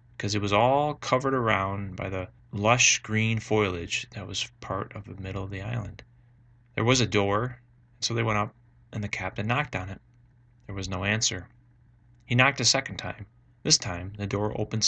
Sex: male